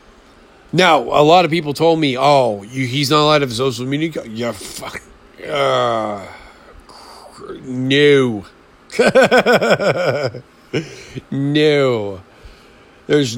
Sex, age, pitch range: male, 50-69, 125-160 Hz